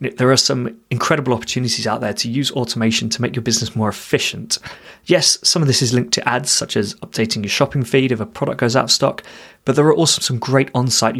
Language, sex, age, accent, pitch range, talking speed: English, male, 20-39, British, 110-135 Hz, 235 wpm